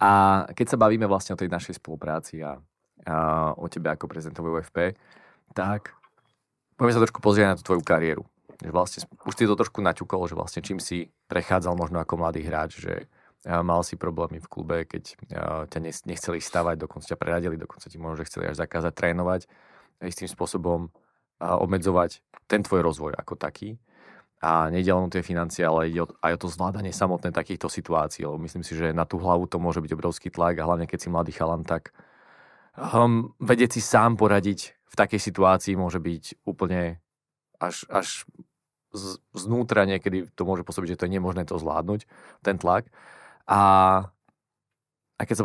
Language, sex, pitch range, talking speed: Slovak, male, 85-100 Hz, 170 wpm